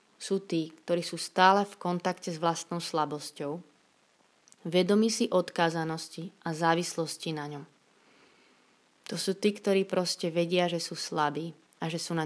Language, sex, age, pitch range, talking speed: Slovak, female, 20-39, 160-185 Hz, 145 wpm